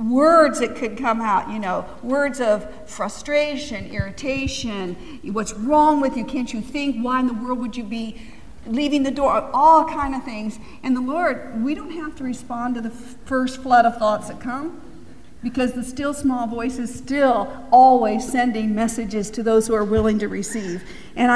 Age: 50-69